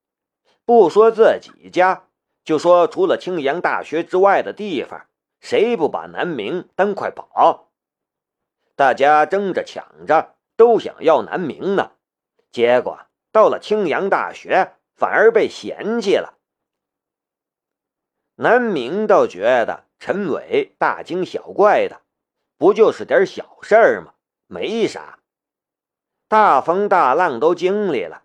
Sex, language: male, Chinese